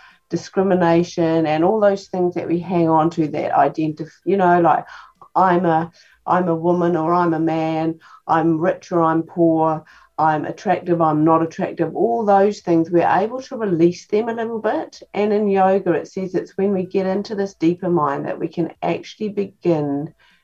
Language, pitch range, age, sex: English, 160-195 Hz, 50-69, female